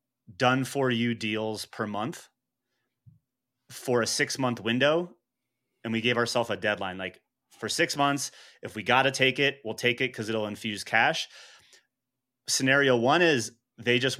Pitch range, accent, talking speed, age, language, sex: 110-125 Hz, American, 165 wpm, 30-49, English, male